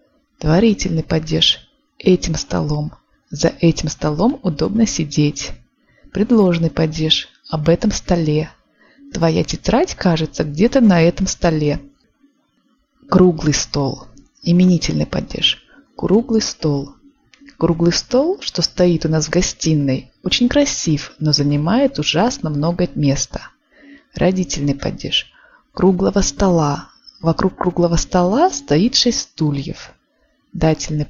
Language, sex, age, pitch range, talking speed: Russian, female, 20-39, 155-225 Hz, 100 wpm